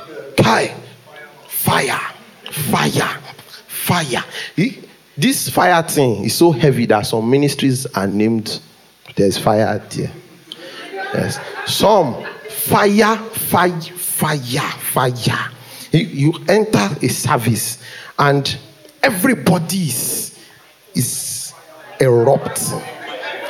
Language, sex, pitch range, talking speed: English, male, 125-180 Hz, 80 wpm